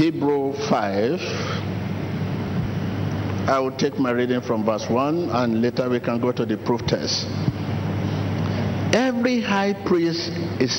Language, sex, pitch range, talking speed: English, male, 110-175 Hz, 130 wpm